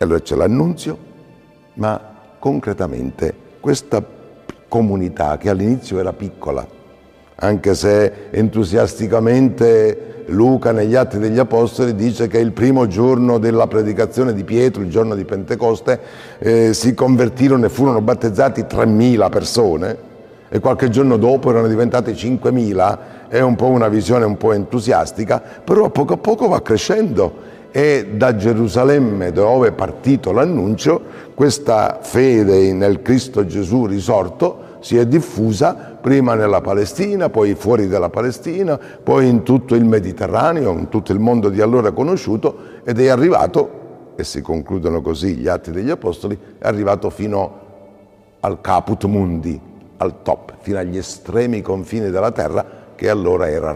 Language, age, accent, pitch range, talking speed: Italian, 50-69, native, 100-125 Hz, 140 wpm